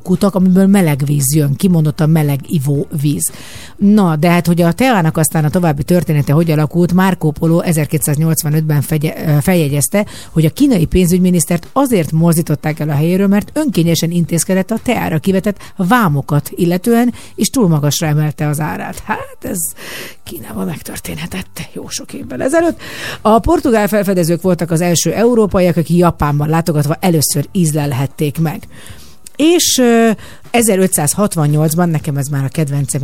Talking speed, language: 140 wpm, Hungarian